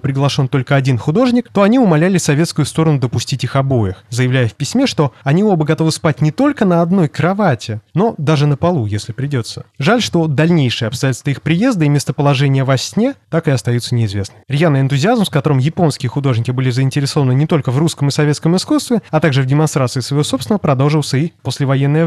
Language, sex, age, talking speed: Russian, male, 20-39, 190 wpm